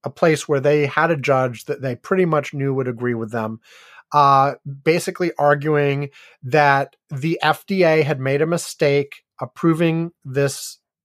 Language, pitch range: English, 145-185 Hz